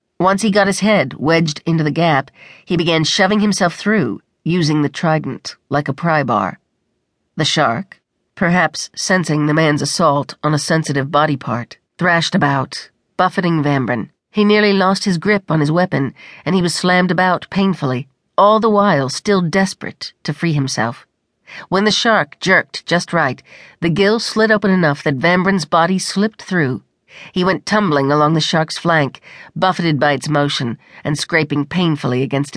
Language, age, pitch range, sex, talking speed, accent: English, 50-69, 145-185 Hz, female, 165 wpm, American